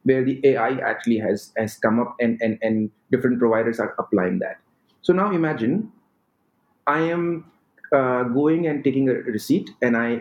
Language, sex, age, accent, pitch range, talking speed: English, male, 30-49, Indian, 125-185 Hz, 170 wpm